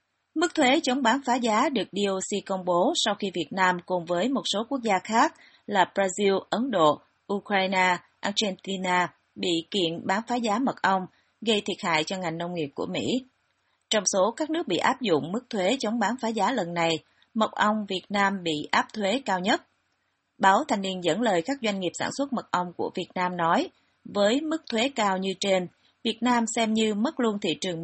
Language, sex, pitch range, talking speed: Vietnamese, female, 180-240 Hz, 210 wpm